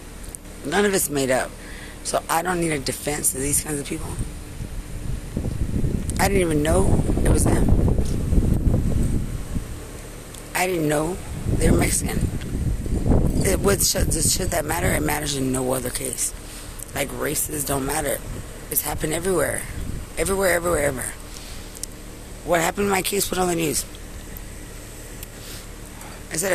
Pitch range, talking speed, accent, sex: 135-180 Hz, 135 wpm, American, female